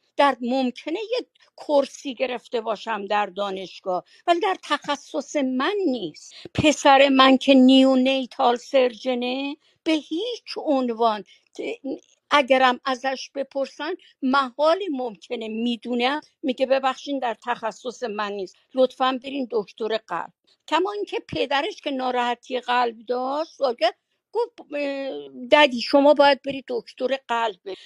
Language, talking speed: Persian, 110 wpm